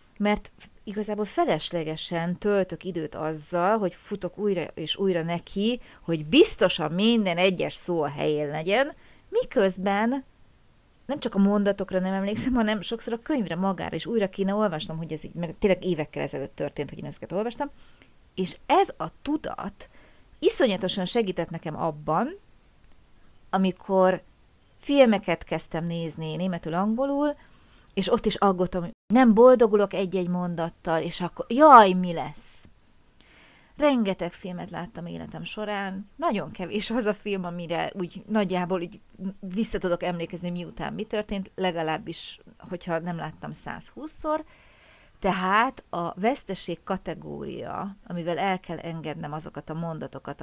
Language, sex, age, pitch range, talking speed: Hungarian, female, 30-49, 170-215 Hz, 130 wpm